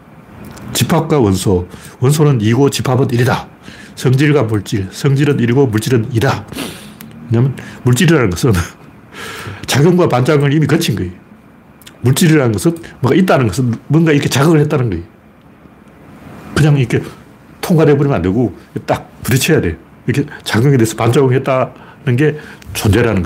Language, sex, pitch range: Korean, male, 110-145 Hz